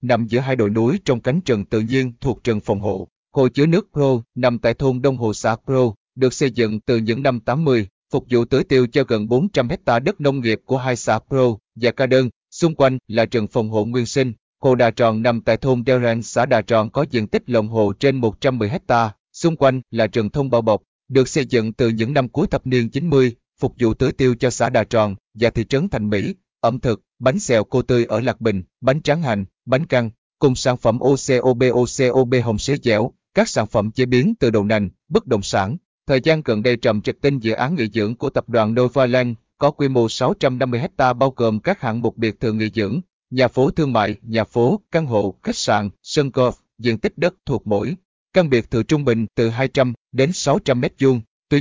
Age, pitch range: 20-39, 115-135 Hz